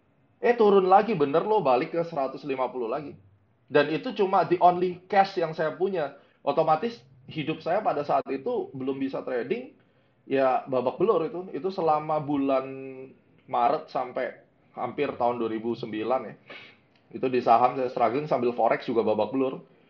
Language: Indonesian